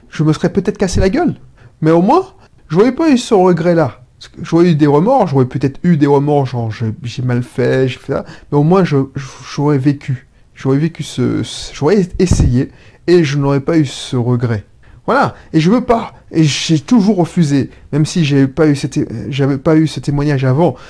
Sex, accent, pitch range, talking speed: male, French, 130-180 Hz, 210 wpm